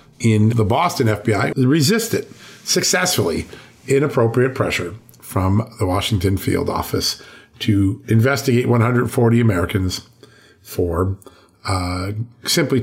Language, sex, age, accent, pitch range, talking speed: English, male, 50-69, American, 105-130 Hz, 95 wpm